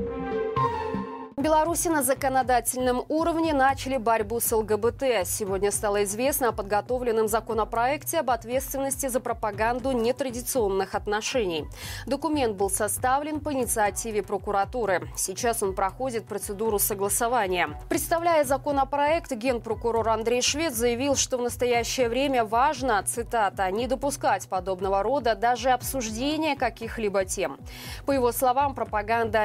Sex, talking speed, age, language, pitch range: female, 115 wpm, 20-39, Russian, 205-265 Hz